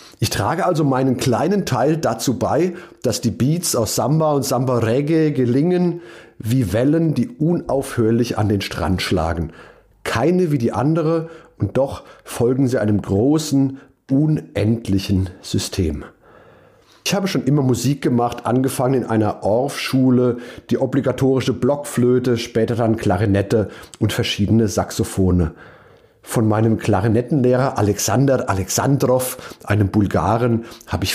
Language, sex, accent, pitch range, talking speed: German, male, German, 110-140 Hz, 125 wpm